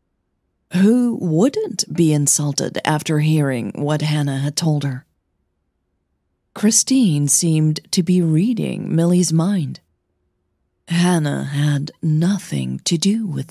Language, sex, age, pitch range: English, female, 40-59, 130-185 Hz